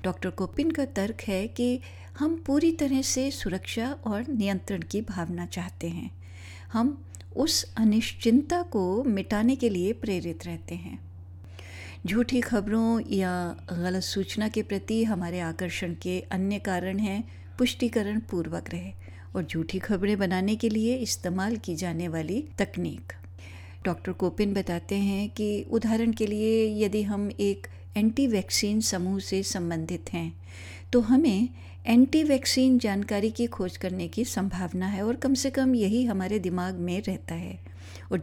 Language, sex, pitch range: Hindi, female, 160-225 Hz